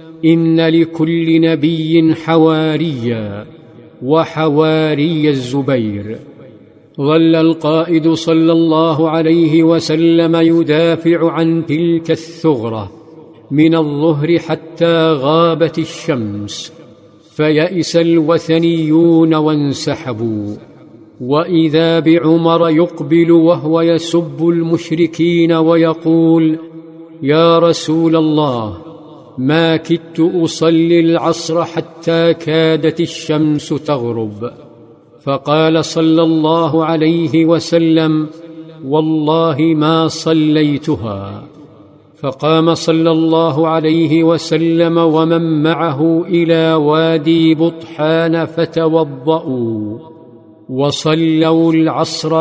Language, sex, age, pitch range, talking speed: Arabic, male, 50-69, 155-165 Hz, 70 wpm